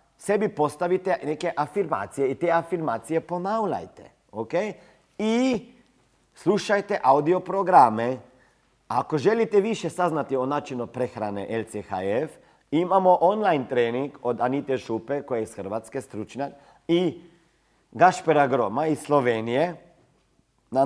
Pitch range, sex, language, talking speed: 135-205 Hz, male, Croatian, 110 wpm